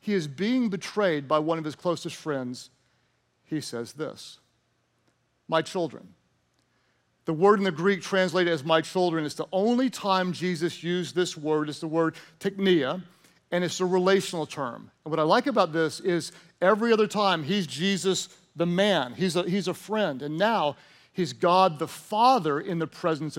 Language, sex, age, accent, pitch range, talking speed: English, male, 50-69, American, 155-195 Hz, 175 wpm